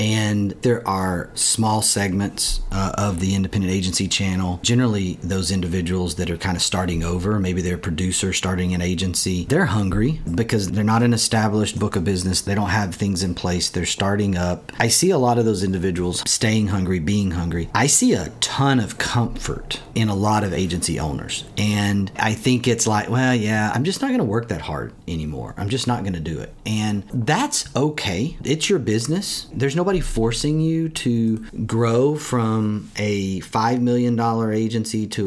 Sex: male